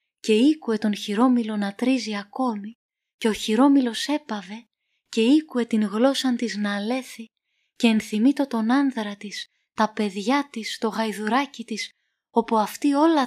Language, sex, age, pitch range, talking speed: Greek, female, 20-39, 210-255 Hz, 145 wpm